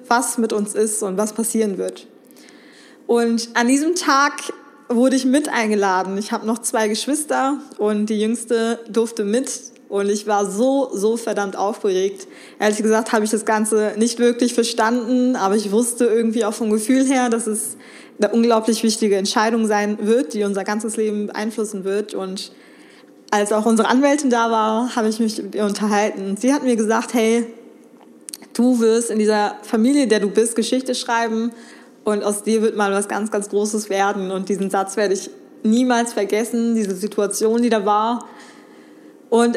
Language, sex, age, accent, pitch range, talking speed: German, female, 20-39, German, 210-245 Hz, 175 wpm